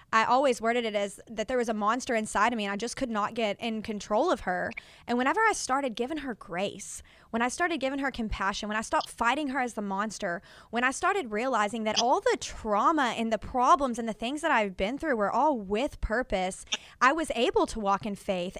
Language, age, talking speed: English, 20-39, 235 wpm